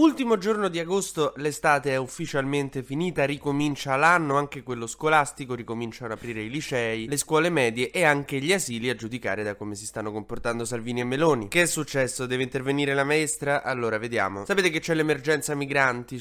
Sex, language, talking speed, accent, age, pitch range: male, Italian, 180 wpm, native, 20-39, 110-145 Hz